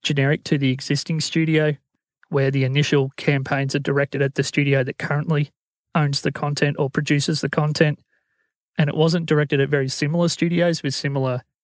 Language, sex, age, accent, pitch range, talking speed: English, male, 30-49, Australian, 135-155 Hz, 170 wpm